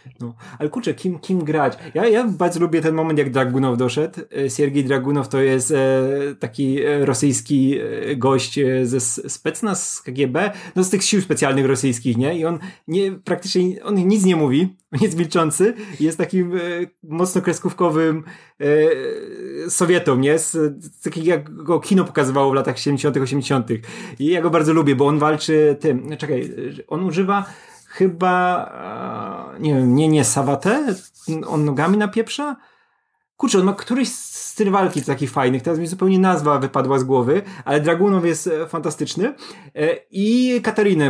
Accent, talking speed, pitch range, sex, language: native, 155 wpm, 140-190 Hz, male, Polish